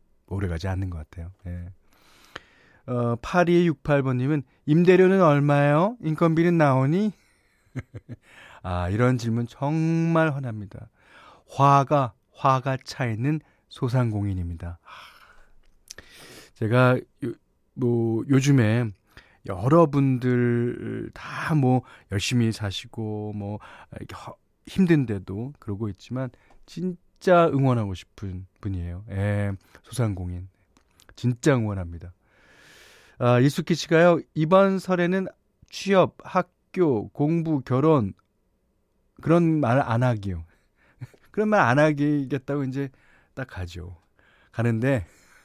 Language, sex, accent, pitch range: Korean, male, native, 105-160 Hz